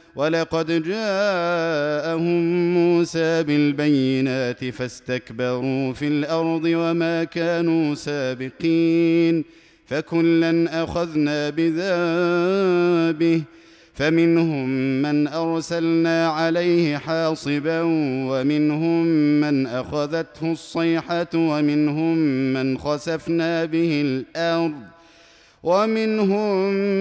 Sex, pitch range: male, 150-170 Hz